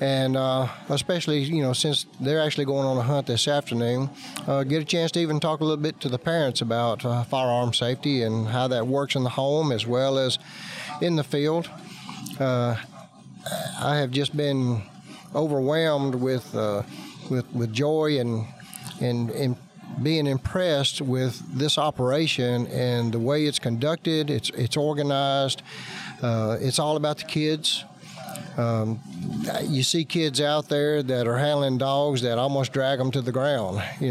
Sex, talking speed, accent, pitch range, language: male, 165 wpm, American, 125-150 Hz, English